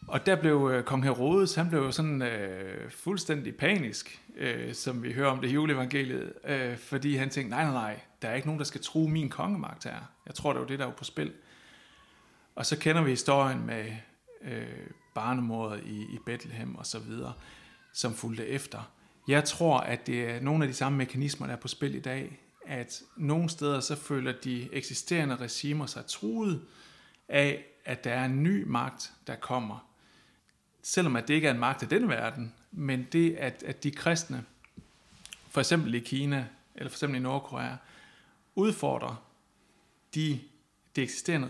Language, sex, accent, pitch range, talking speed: Danish, male, native, 120-150 Hz, 185 wpm